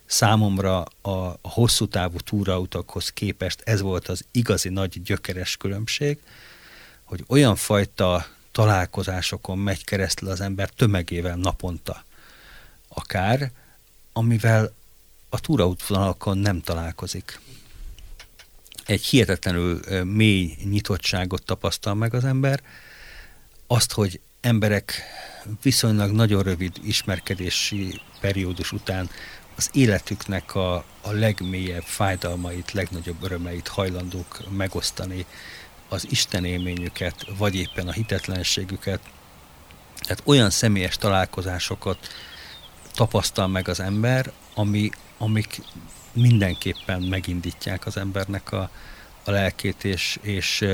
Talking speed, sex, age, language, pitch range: 95 wpm, male, 50-69, Hungarian, 90-105 Hz